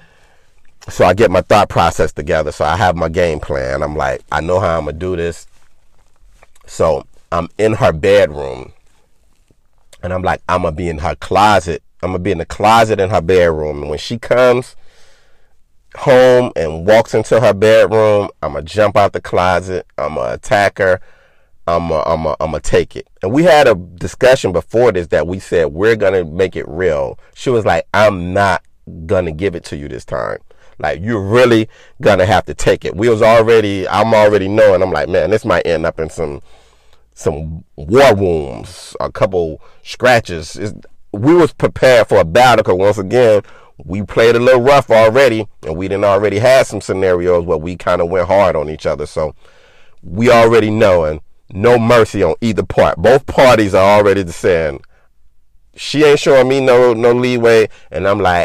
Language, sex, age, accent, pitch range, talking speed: English, male, 30-49, American, 85-125 Hz, 195 wpm